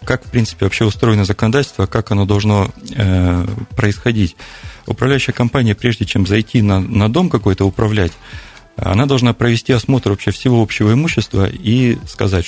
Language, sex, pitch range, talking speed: Russian, male, 95-115 Hz, 150 wpm